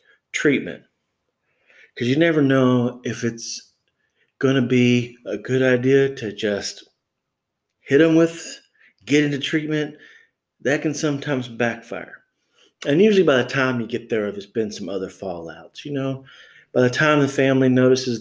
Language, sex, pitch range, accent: English, male, 110-130 Hz, American